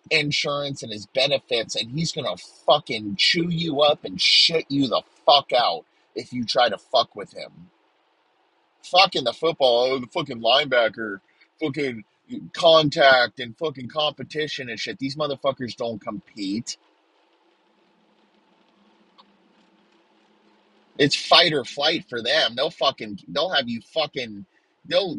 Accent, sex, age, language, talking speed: American, male, 30-49, English, 130 wpm